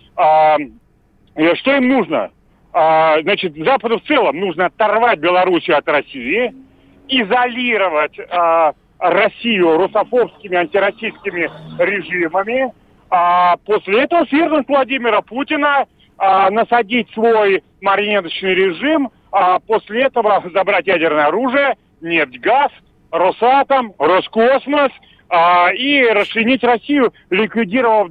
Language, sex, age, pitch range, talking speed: Russian, male, 40-59, 175-240 Hz, 85 wpm